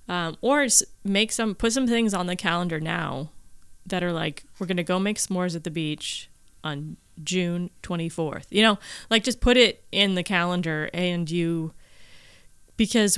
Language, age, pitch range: English, 20-39, 165-210 Hz